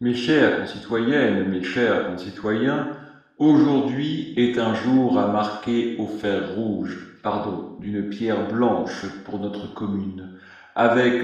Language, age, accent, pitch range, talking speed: French, 40-59, French, 110-145 Hz, 125 wpm